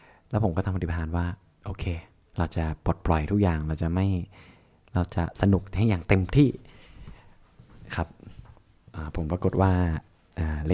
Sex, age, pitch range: male, 20-39, 85-105 Hz